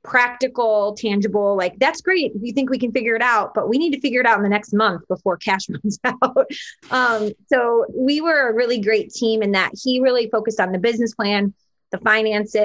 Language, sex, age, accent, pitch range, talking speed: English, female, 20-39, American, 190-230 Hz, 220 wpm